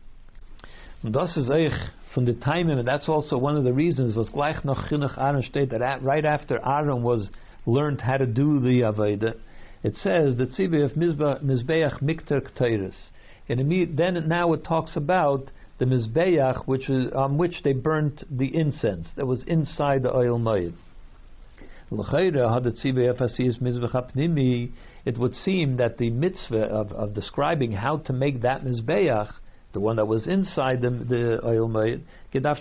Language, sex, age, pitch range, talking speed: English, male, 60-79, 120-150 Hz, 130 wpm